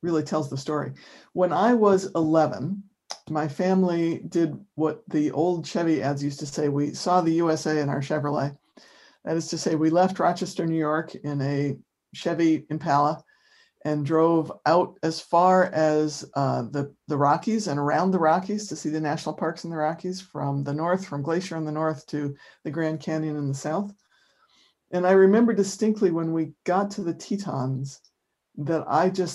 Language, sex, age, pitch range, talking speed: English, male, 60-79, 145-175 Hz, 180 wpm